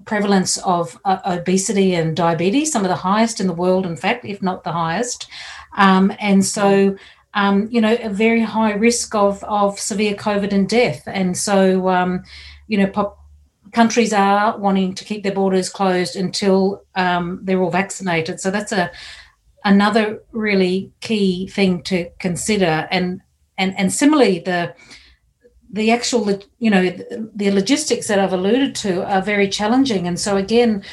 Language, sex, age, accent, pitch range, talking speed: English, female, 40-59, Australian, 180-210 Hz, 165 wpm